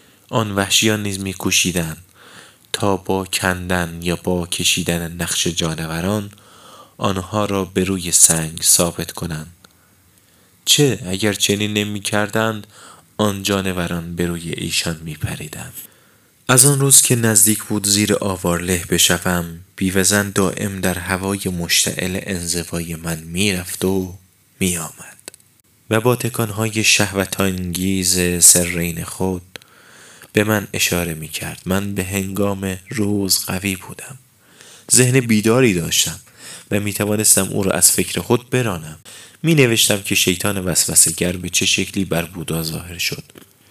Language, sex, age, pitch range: Persian, male, 20-39, 90-105 Hz